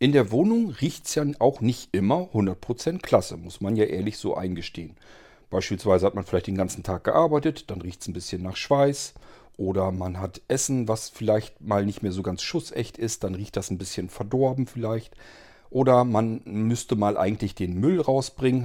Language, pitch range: German, 95-120 Hz